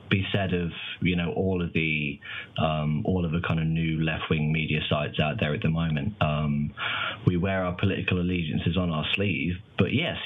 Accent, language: British, English